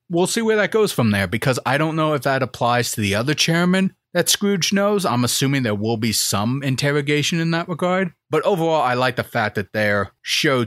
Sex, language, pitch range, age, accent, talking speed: male, English, 105-150 Hz, 30-49, American, 225 wpm